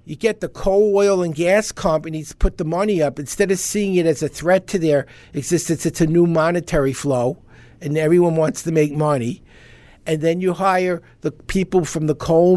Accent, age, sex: American, 50-69, male